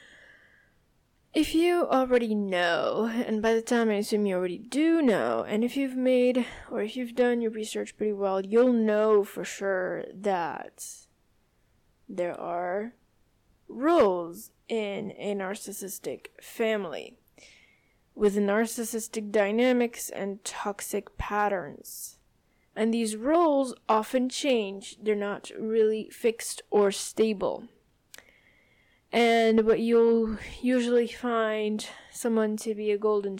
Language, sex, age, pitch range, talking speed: English, female, 10-29, 205-245 Hz, 115 wpm